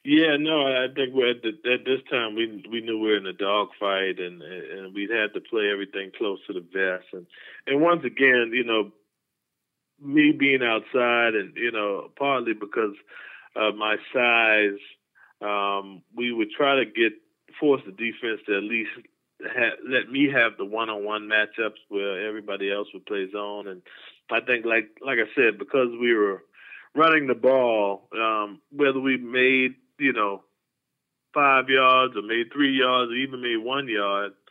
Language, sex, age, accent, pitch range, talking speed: English, male, 20-39, American, 105-130 Hz, 180 wpm